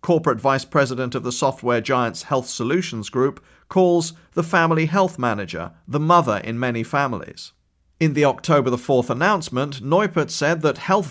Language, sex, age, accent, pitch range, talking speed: English, male, 40-59, British, 130-170 Hz, 155 wpm